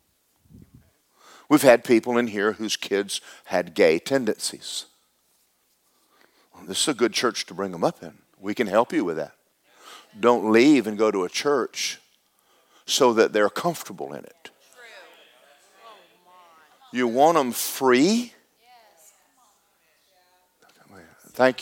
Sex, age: male, 50-69